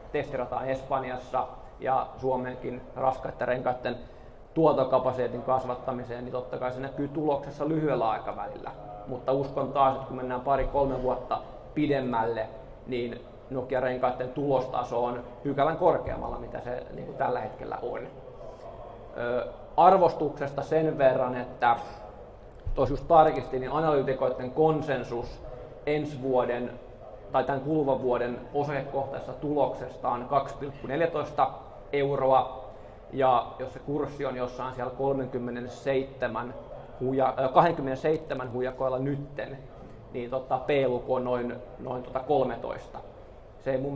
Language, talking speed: Finnish, 100 wpm